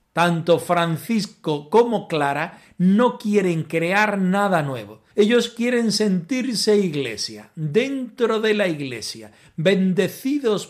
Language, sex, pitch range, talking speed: Spanish, male, 150-205 Hz, 100 wpm